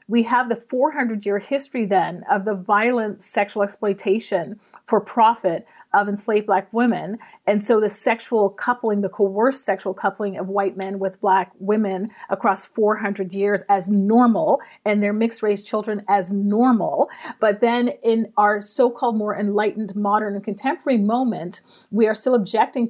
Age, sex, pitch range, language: 30-49, female, 205-235 Hz, English